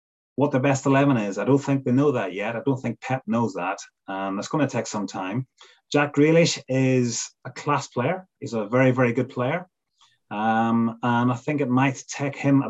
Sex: male